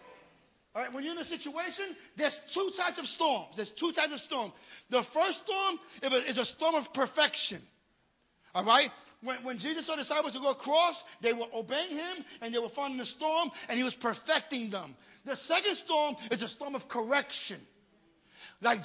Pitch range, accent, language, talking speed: 200-300 Hz, American, English, 190 wpm